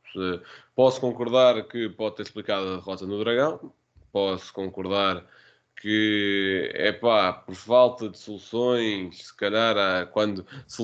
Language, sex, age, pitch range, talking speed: Portuguese, male, 20-39, 100-125 Hz, 135 wpm